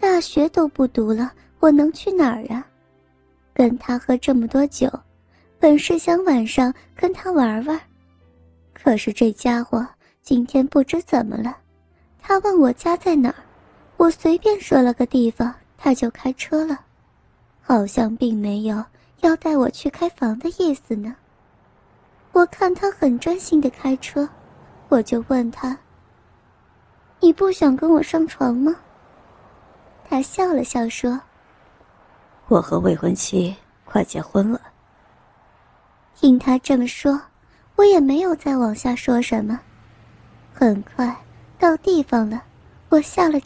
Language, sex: Chinese, male